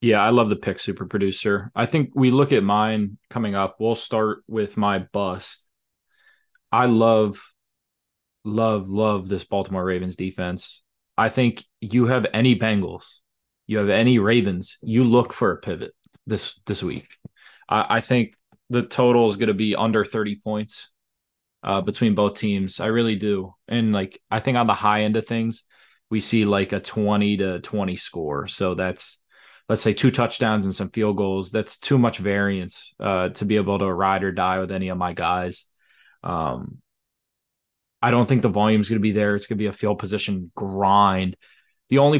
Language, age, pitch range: English, 20-39, 95-110 Hz